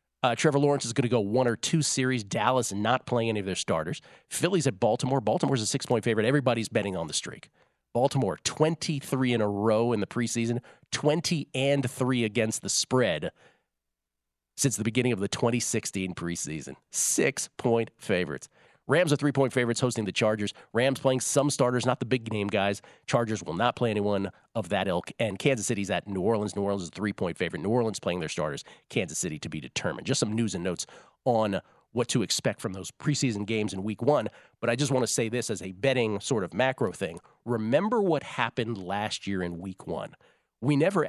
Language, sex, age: English, male, 40-59